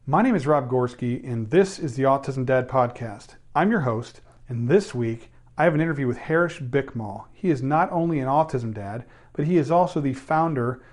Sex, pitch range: male, 125-155 Hz